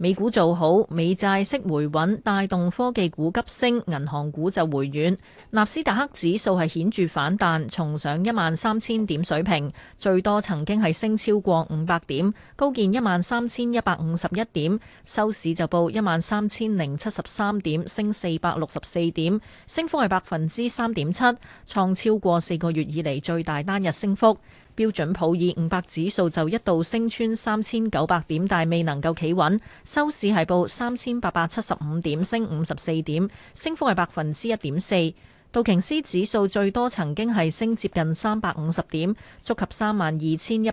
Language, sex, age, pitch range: Chinese, female, 30-49, 165-215 Hz